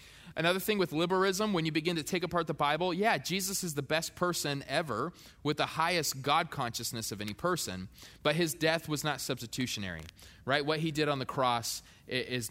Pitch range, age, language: 115-175 Hz, 20-39, English